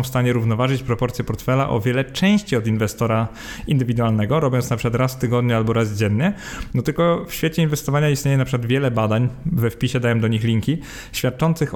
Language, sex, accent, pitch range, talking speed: Polish, male, native, 120-150 Hz, 190 wpm